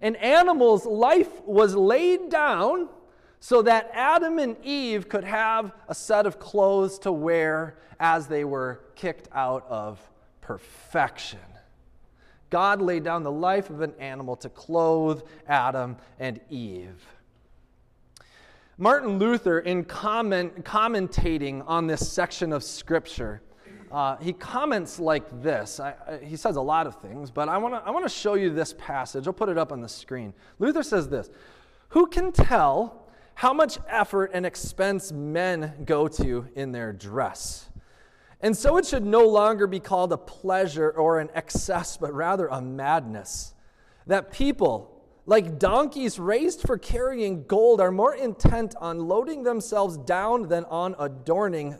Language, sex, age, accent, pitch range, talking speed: English, male, 30-49, American, 145-225 Hz, 150 wpm